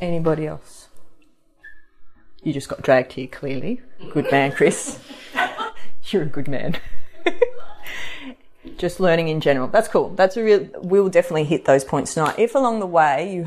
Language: English